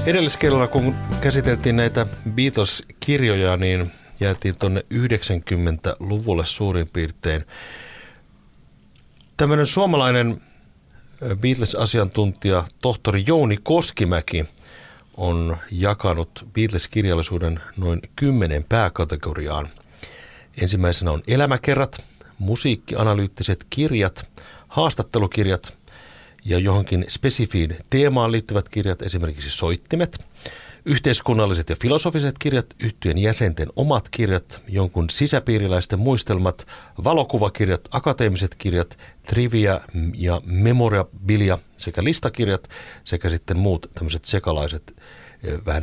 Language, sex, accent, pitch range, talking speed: Finnish, male, native, 85-120 Hz, 80 wpm